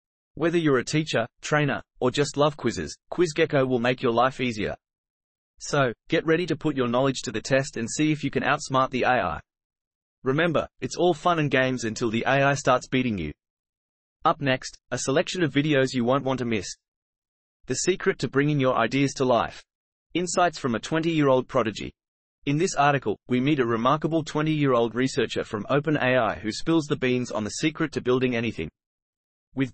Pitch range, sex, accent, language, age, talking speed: 120-150 Hz, male, Australian, English, 30-49, 185 wpm